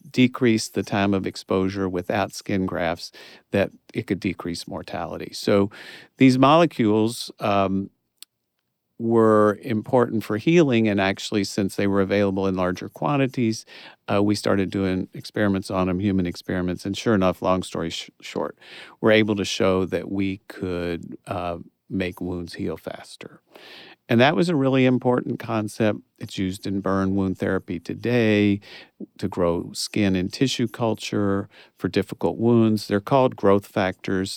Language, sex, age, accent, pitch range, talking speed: English, male, 50-69, American, 95-110 Hz, 145 wpm